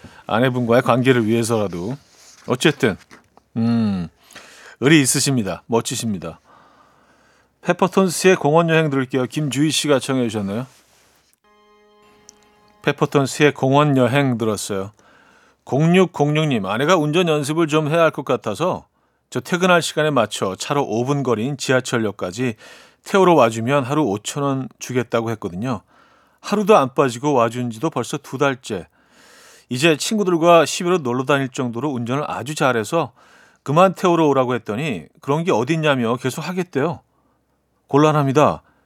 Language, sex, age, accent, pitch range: Korean, male, 40-59, native, 120-165 Hz